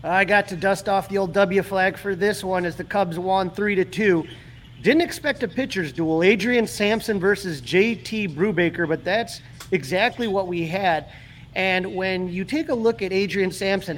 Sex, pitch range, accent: male, 170-220 Hz, American